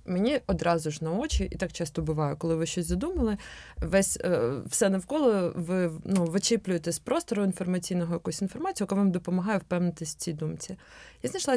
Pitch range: 165-200 Hz